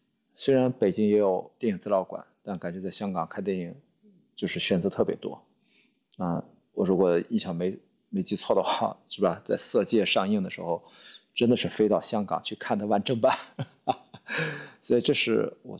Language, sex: Chinese, male